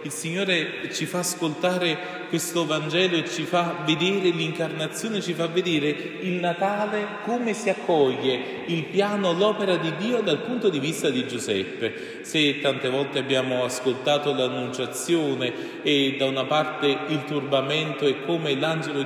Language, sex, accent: Italian, male, native